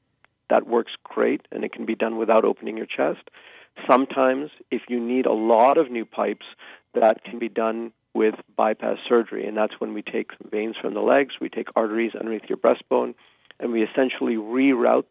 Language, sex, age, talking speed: English, male, 50-69, 185 wpm